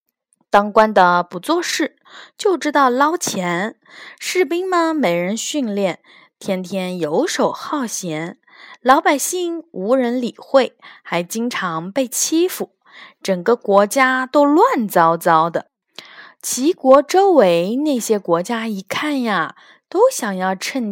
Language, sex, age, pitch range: Chinese, female, 20-39, 185-270 Hz